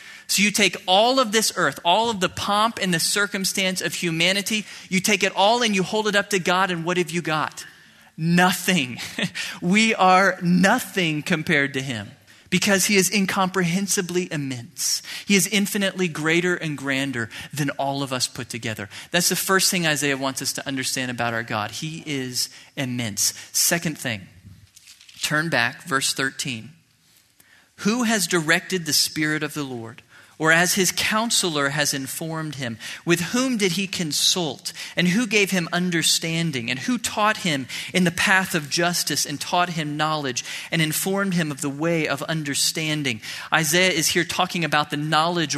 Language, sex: English, male